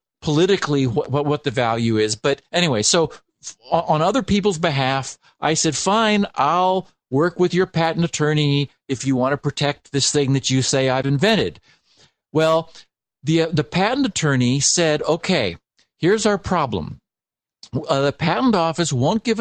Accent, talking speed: American, 155 wpm